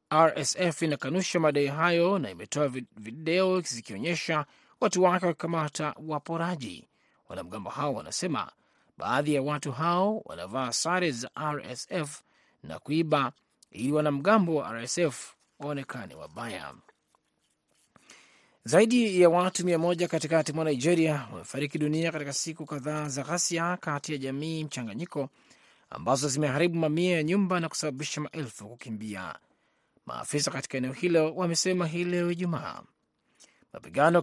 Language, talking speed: Swahili, 115 wpm